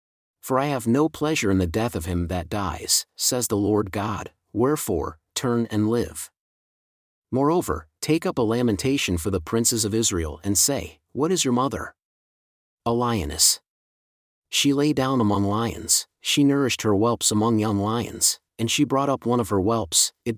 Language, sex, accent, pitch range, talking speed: English, male, American, 95-125 Hz, 175 wpm